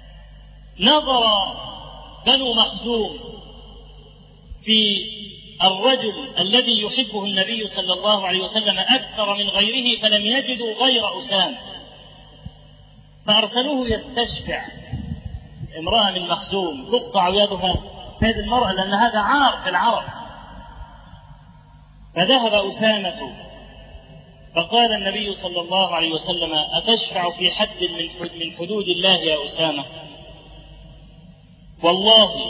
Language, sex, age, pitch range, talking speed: Arabic, male, 40-59, 180-240 Hz, 90 wpm